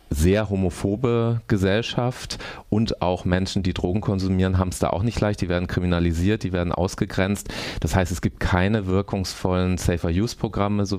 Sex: male